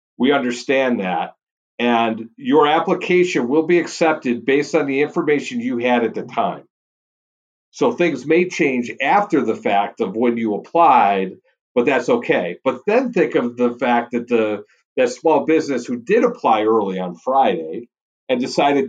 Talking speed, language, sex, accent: 160 wpm, English, male, American